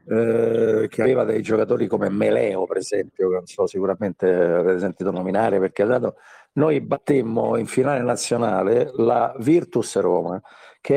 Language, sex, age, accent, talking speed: Italian, male, 50-69, native, 155 wpm